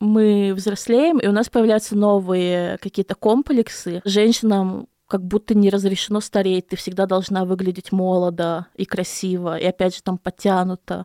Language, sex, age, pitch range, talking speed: Russian, female, 20-39, 190-230 Hz, 145 wpm